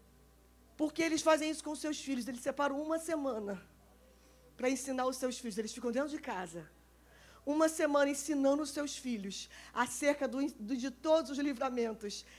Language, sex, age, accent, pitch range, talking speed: Portuguese, female, 20-39, Brazilian, 290-345 Hz, 155 wpm